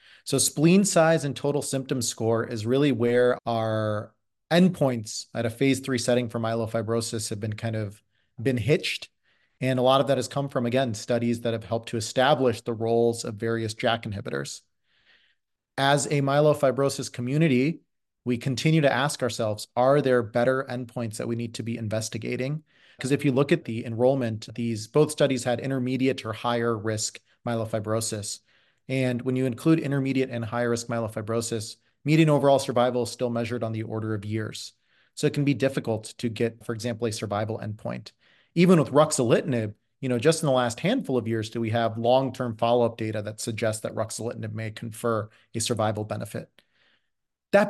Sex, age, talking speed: male, 30-49, 175 wpm